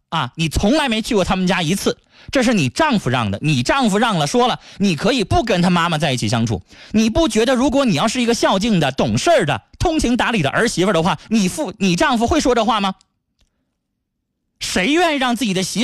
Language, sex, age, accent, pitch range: Chinese, male, 20-39, native, 180-255 Hz